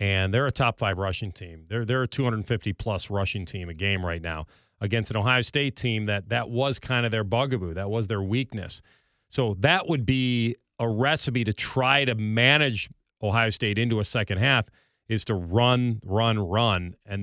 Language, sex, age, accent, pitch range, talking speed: English, male, 40-59, American, 95-120 Hz, 195 wpm